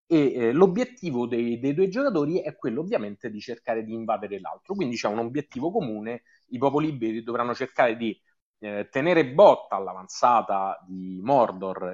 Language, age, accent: Italian, 30-49, native